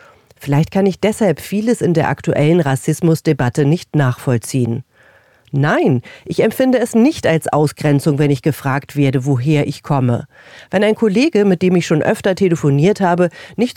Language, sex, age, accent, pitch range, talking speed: German, female, 40-59, German, 140-200 Hz, 155 wpm